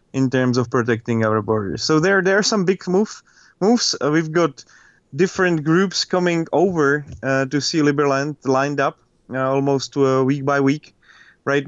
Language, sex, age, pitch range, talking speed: English, male, 30-49, 130-150 Hz, 175 wpm